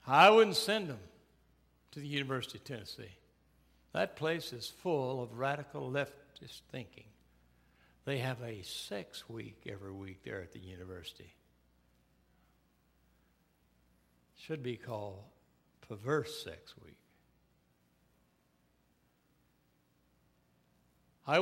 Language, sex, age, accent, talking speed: English, male, 60-79, American, 100 wpm